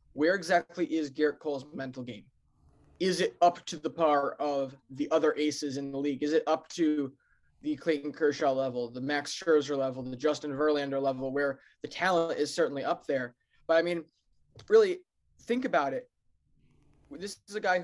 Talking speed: 180 wpm